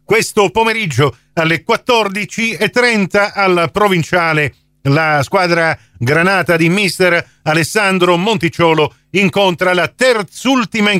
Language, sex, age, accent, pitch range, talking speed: Italian, male, 50-69, native, 130-185 Hz, 95 wpm